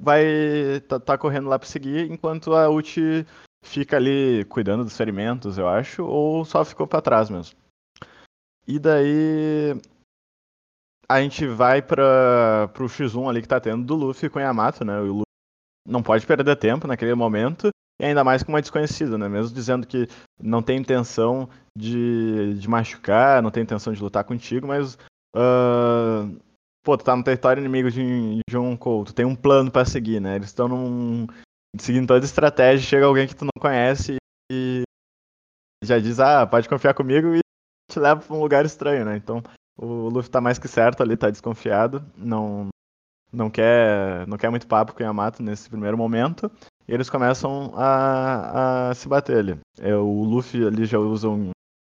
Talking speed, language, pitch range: 180 wpm, Portuguese, 110-140 Hz